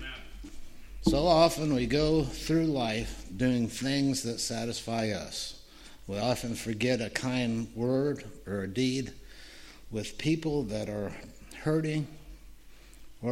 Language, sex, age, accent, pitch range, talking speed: English, male, 60-79, American, 105-130 Hz, 115 wpm